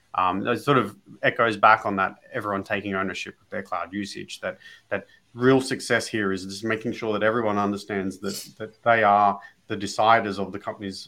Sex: male